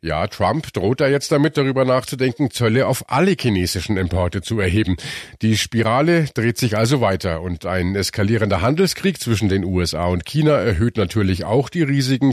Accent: German